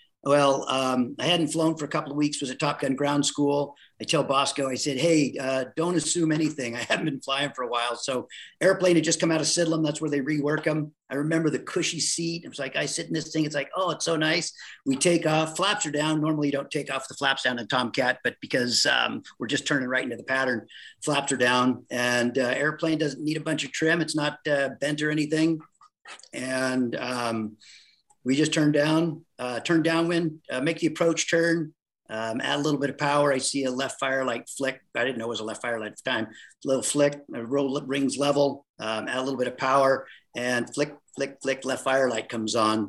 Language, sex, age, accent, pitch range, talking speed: English, male, 40-59, American, 130-155 Hz, 235 wpm